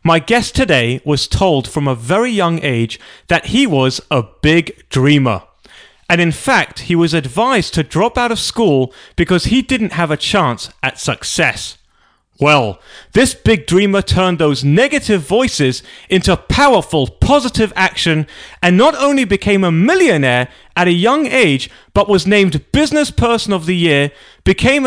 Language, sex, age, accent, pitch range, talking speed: English, male, 30-49, British, 145-215 Hz, 160 wpm